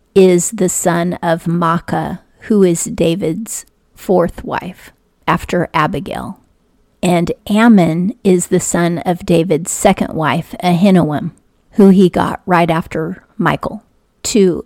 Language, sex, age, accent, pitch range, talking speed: English, female, 40-59, American, 170-190 Hz, 120 wpm